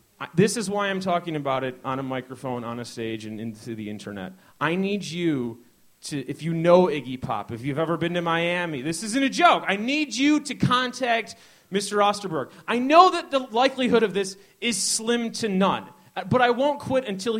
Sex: male